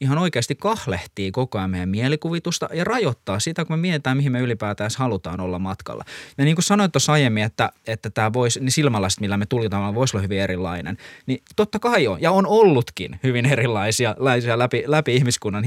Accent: native